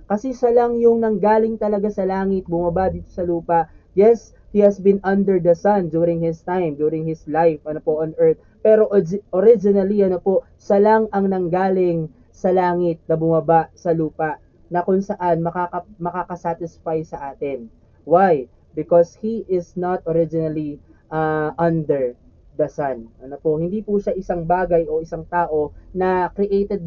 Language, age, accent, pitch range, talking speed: Filipino, 20-39, native, 160-195 Hz, 150 wpm